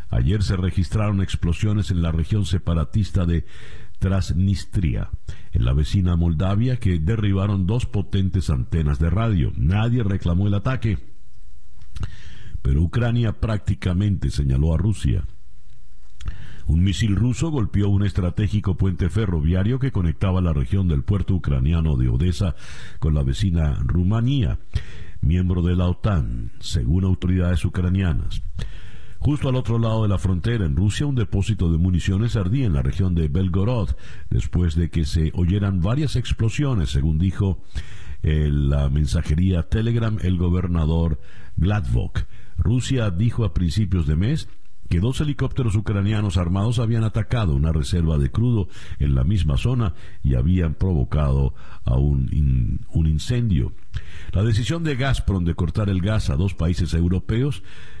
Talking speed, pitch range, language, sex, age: 135 wpm, 85-110 Hz, Spanish, male, 60-79